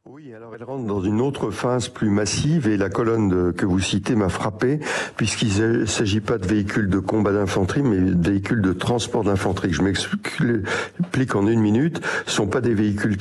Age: 60-79